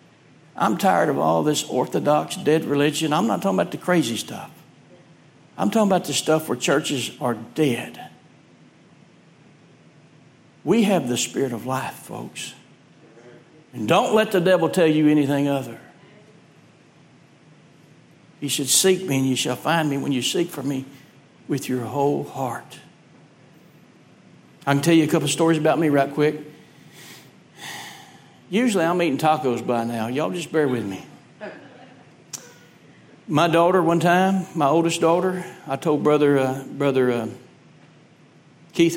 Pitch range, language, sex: 135-165 Hz, English, male